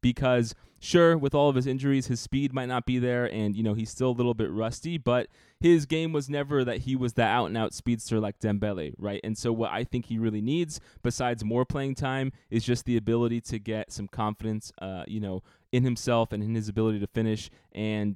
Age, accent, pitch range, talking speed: 20-39, American, 110-140 Hz, 225 wpm